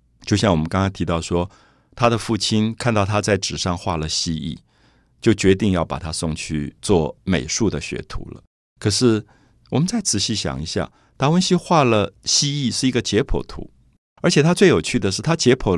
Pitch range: 90-140 Hz